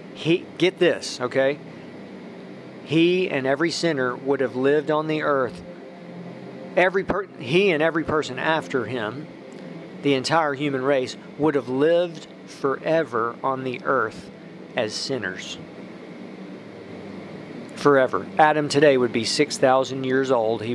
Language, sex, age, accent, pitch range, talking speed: English, male, 40-59, American, 130-155 Hz, 125 wpm